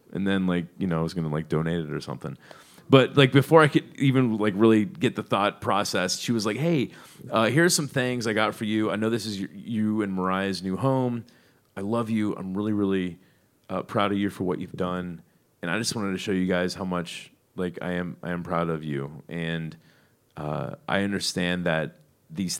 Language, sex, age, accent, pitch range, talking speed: English, male, 30-49, American, 95-130 Hz, 225 wpm